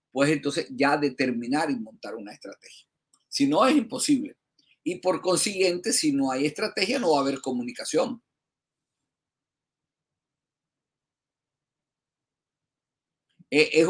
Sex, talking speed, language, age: male, 110 wpm, Spanish, 50-69